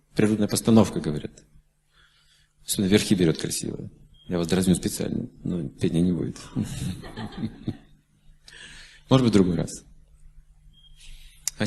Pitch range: 100-120 Hz